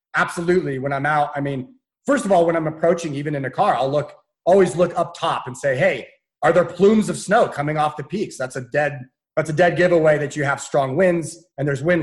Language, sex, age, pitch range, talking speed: English, male, 30-49, 140-175 Hz, 245 wpm